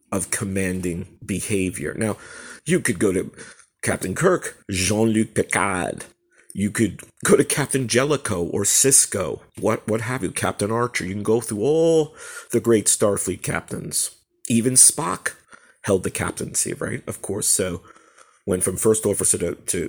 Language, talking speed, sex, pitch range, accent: English, 155 wpm, male, 95-120 Hz, American